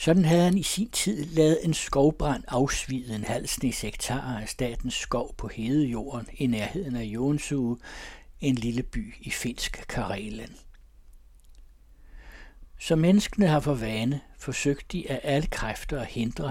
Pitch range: 110-145 Hz